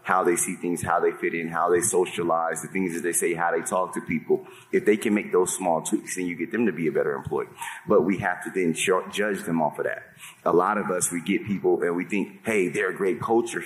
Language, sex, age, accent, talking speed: English, male, 30-49, American, 270 wpm